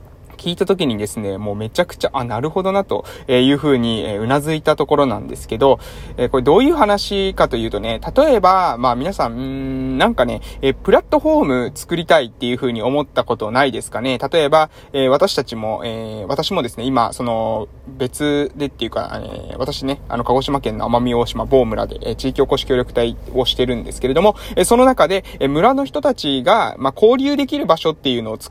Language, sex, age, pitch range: Japanese, male, 20-39, 125-170 Hz